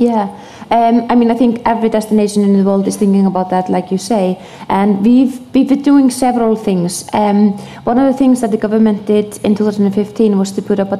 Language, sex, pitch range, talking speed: English, female, 195-220 Hz, 200 wpm